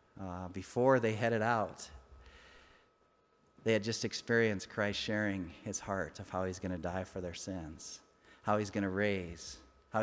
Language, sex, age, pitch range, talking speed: English, male, 40-59, 95-115 Hz, 155 wpm